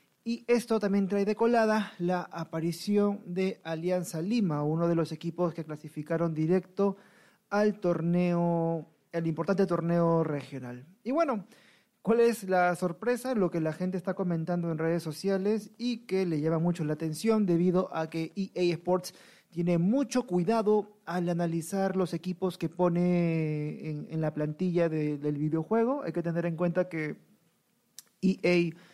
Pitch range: 160-195 Hz